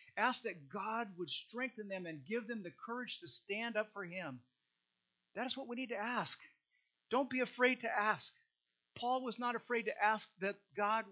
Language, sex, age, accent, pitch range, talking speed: English, male, 50-69, American, 160-230 Hz, 195 wpm